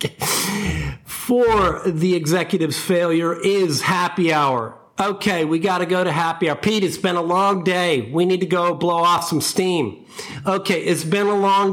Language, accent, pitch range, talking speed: English, American, 145-195 Hz, 175 wpm